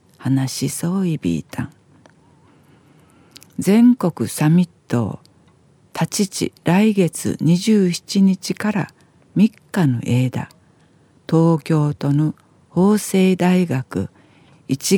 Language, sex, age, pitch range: Japanese, female, 50-69, 140-185 Hz